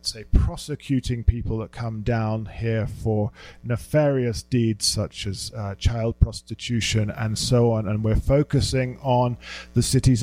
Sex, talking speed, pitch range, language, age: male, 140 wpm, 105-130 Hz, English, 40-59